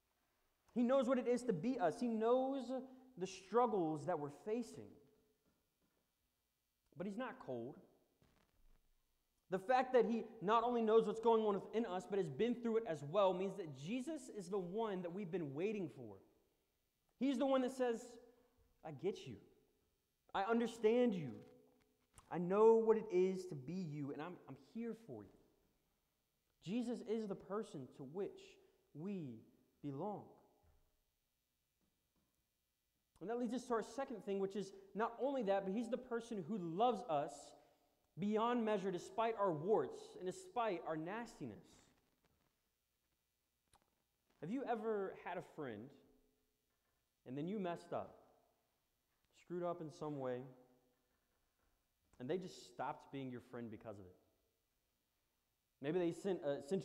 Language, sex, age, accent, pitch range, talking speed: English, male, 30-49, American, 145-230 Hz, 150 wpm